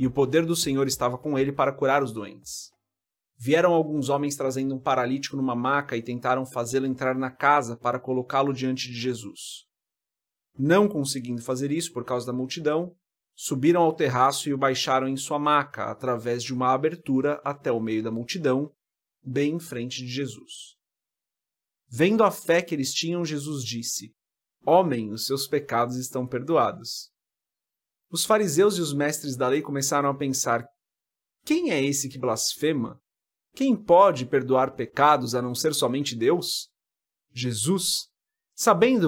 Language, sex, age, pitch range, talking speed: Portuguese, male, 30-49, 130-160 Hz, 155 wpm